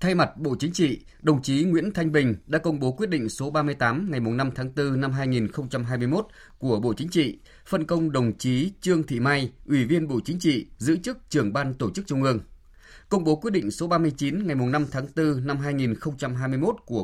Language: Vietnamese